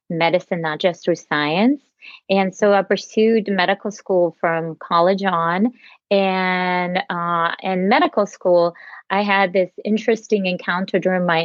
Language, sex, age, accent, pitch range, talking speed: English, female, 30-49, American, 170-195 Hz, 135 wpm